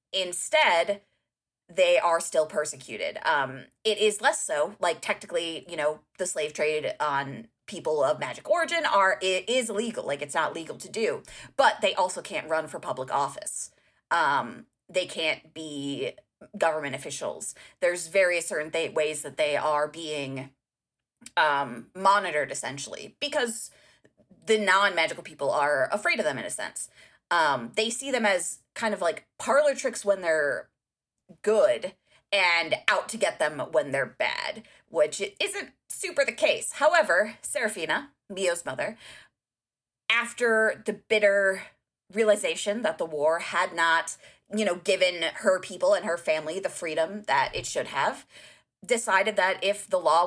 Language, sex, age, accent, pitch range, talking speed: English, female, 20-39, American, 160-220 Hz, 150 wpm